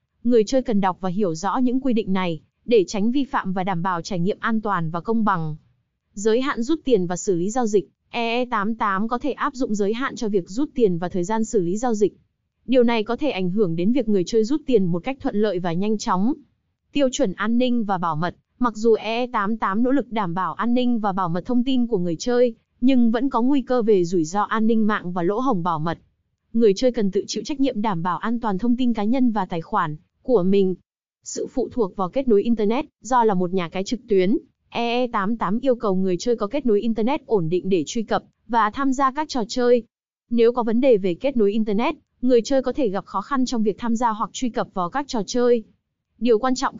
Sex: female